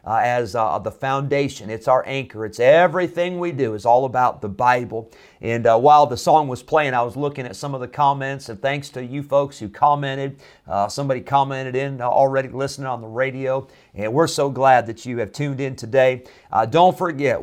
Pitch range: 120-145 Hz